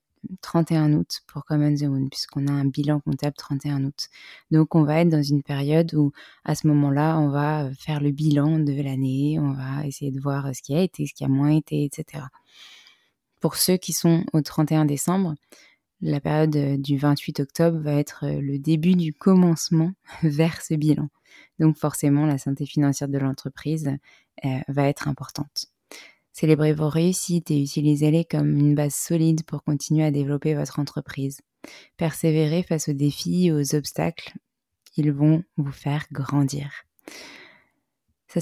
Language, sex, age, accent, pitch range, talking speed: French, female, 20-39, French, 145-165 Hz, 165 wpm